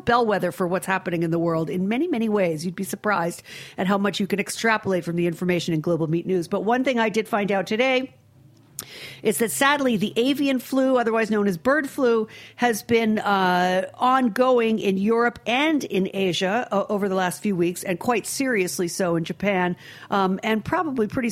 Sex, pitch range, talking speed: female, 170-220 Hz, 200 wpm